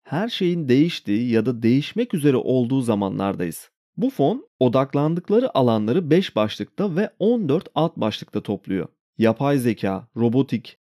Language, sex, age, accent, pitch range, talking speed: Turkish, male, 30-49, native, 110-165 Hz, 125 wpm